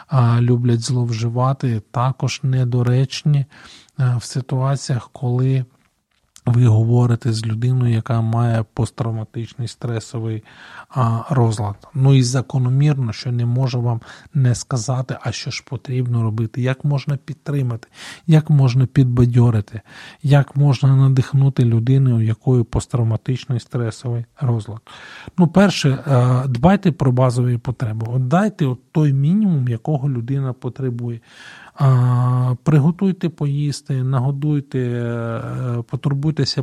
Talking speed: 105 wpm